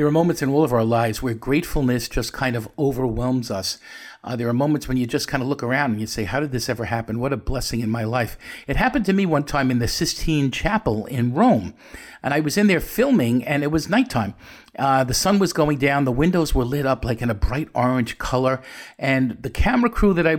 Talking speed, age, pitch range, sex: 250 wpm, 50-69, 125-165 Hz, male